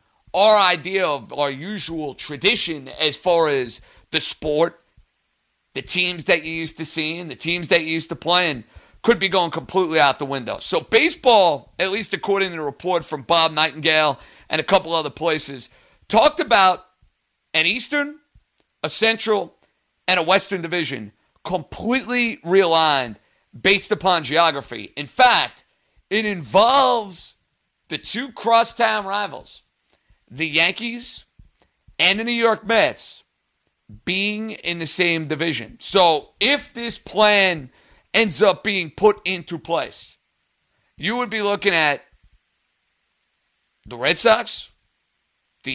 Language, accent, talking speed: English, American, 135 wpm